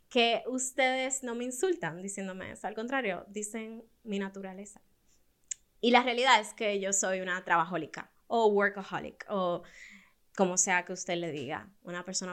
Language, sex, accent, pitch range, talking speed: Spanish, female, American, 185-230 Hz, 155 wpm